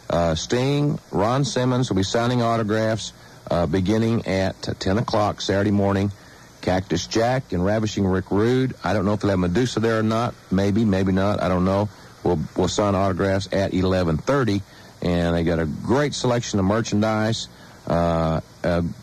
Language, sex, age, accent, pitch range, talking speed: English, male, 50-69, American, 90-115 Hz, 165 wpm